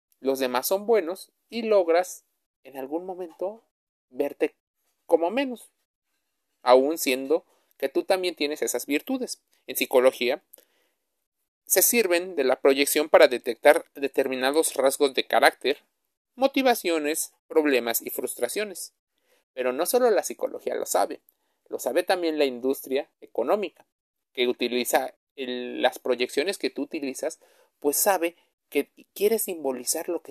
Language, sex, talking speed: Spanish, male, 130 wpm